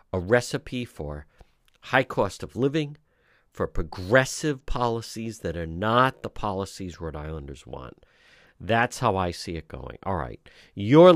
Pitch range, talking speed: 100-145 Hz, 145 wpm